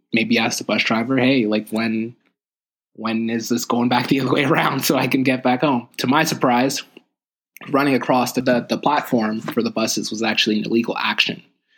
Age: 20-39